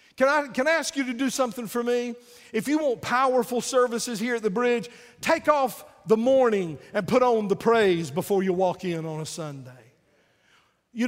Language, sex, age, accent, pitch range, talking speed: English, male, 50-69, American, 165-240 Hz, 200 wpm